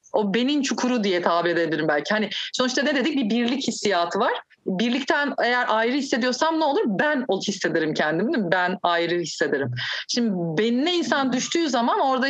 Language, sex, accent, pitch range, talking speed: Turkish, female, native, 195-270 Hz, 165 wpm